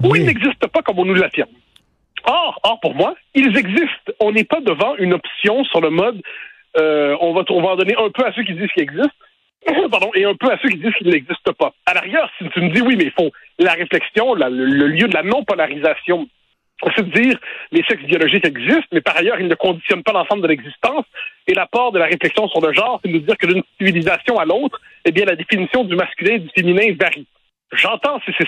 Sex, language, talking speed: male, French, 240 wpm